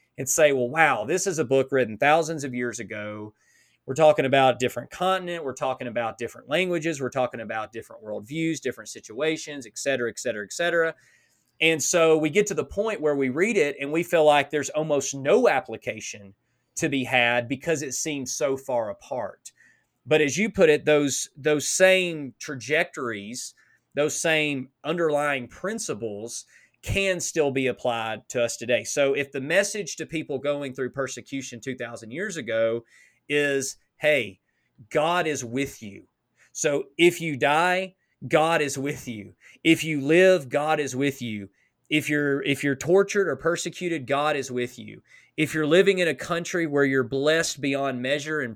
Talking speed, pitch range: 175 wpm, 130-165 Hz